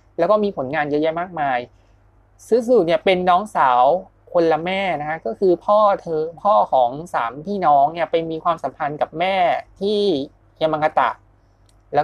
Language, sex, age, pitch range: Thai, male, 20-39, 145-200 Hz